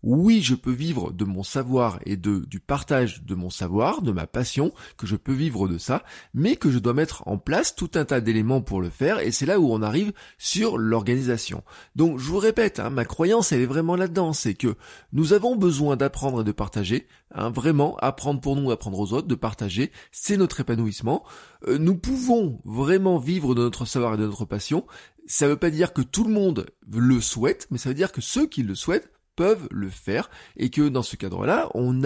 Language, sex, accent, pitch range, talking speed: French, male, French, 115-165 Hz, 225 wpm